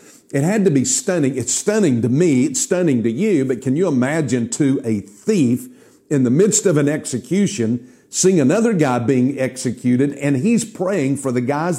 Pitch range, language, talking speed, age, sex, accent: 120-165 Hz, English, 190 wpm, 50-69, male, American